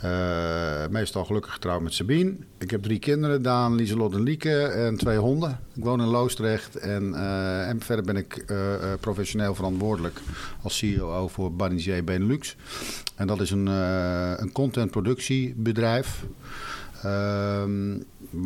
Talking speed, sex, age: 145 wpm, male, 50-69